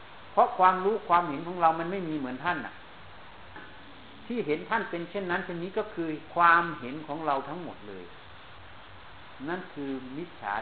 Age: 60-79